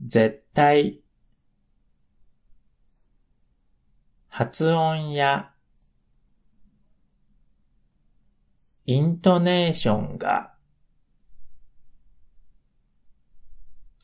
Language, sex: Japanese, male